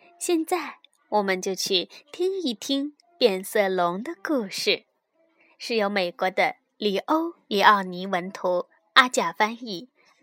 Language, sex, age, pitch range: Chinese, female, 20-39, 220-345 Hz